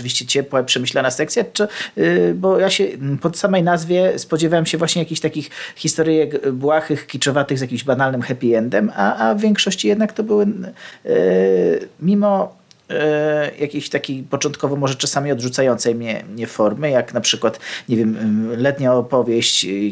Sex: male